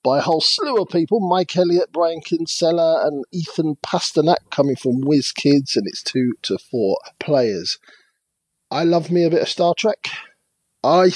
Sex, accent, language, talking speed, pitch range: male, British, English, 165 wpm, 135-180 Hz